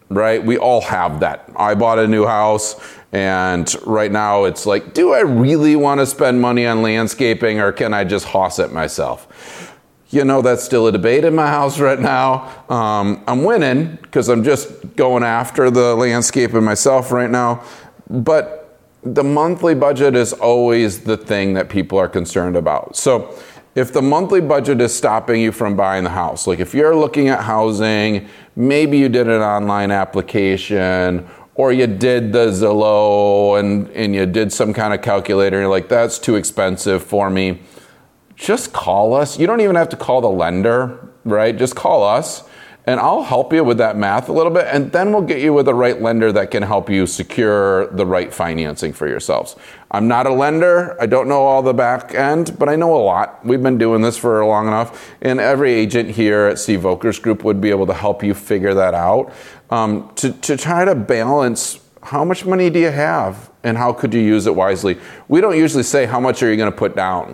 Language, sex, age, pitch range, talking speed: English, male, 30-49, 100-135 Hz, 200 wpm